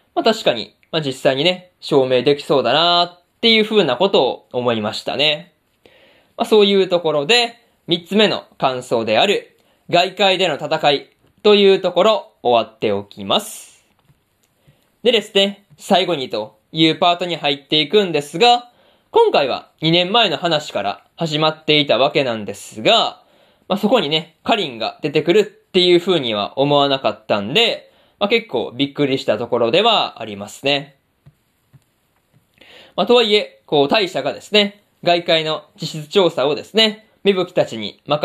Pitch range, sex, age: 145-210 Hz, male, 20-39